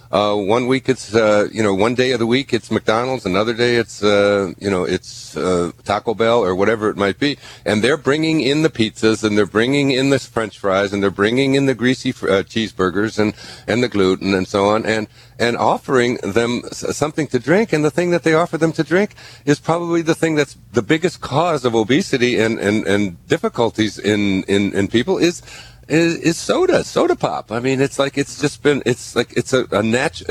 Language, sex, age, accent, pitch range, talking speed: English, male, 50-69, American, 100-140 Hz, 215 wpm